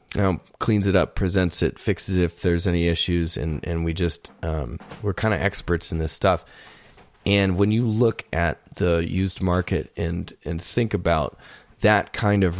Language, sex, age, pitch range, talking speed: English, male, 30-49, 90-105 Hz, 190 wpm